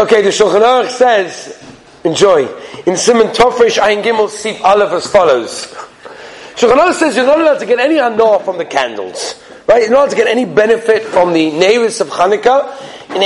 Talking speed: 180 wpm